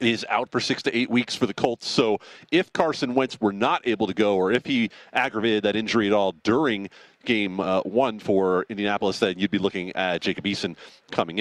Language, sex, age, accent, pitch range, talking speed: English, male, 40-59, American, 105-145 Hz, 215 wpm